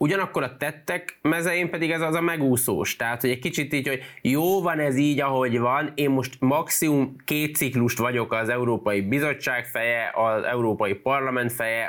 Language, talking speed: Hungarian, 175 wpm